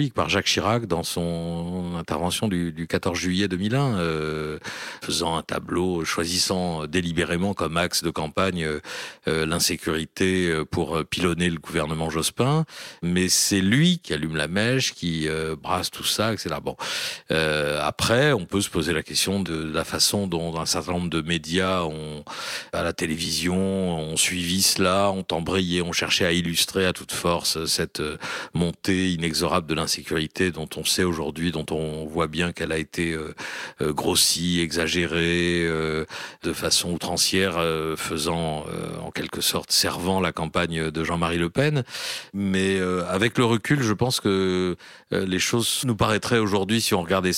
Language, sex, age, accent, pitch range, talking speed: French, male, 50-69, French, 80-95 Hz, 165 wpm